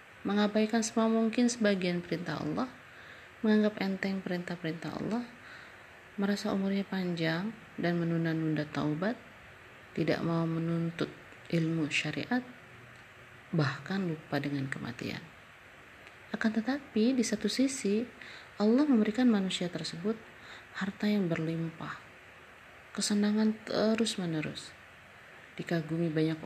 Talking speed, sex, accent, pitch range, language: 90 wpm, female, native, 160-215 Hz, Indonesian